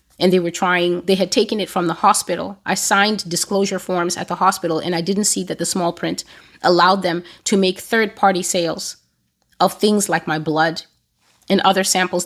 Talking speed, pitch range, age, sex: 195 wpm, 160-190 Hz, 30-49, female